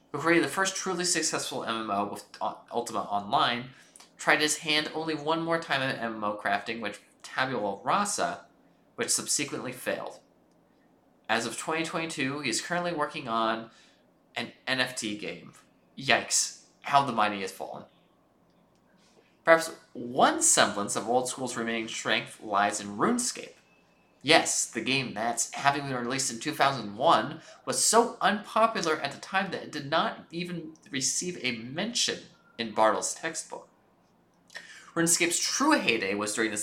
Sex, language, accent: male, English, American